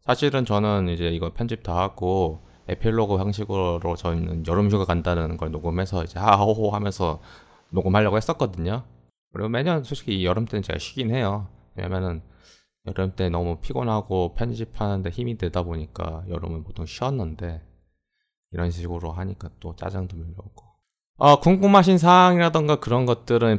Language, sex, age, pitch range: Korean, male, 20-39, 85-110 Hz